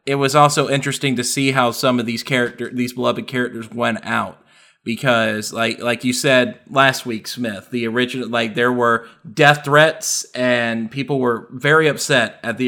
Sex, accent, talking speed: male, American, 180 wpm